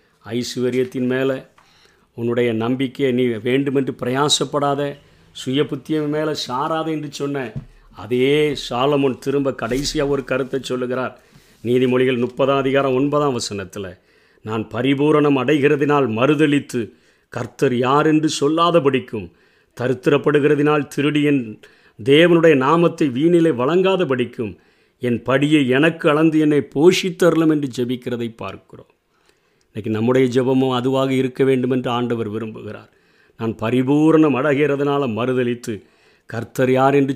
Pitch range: 125-150 Hz